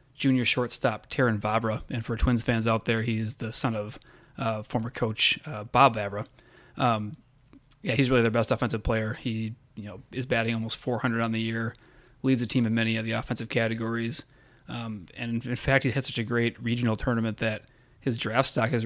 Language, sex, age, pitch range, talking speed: English, male, 30-49, 110-125 Hz, 200 wpm